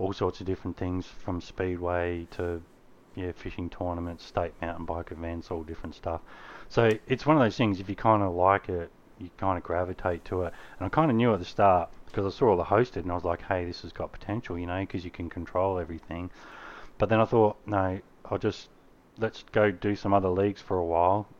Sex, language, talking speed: male, English, 225 wpm